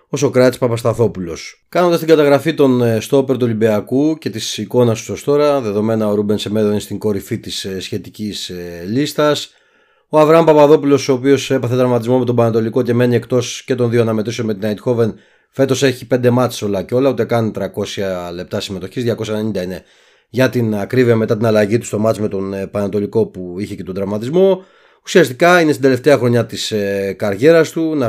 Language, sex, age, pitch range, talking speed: Greek, male, 30-49, 105-130 Hz, 185 wpm